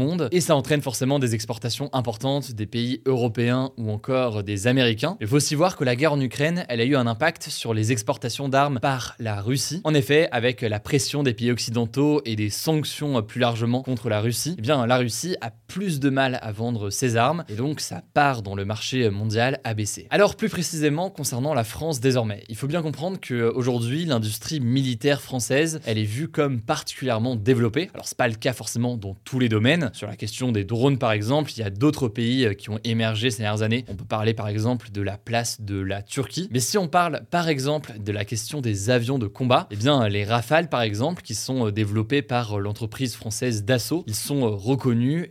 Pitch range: 115-145 Hz